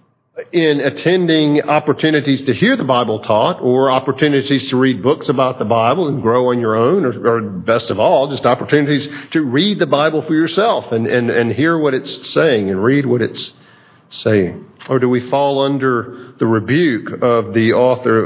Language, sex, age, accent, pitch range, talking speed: English, male, 50-69, American, 120-150 Hz, 185 wpm